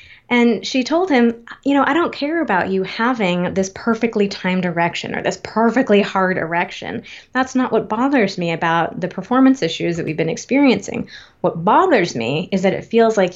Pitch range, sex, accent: 175-215 Hz, female, American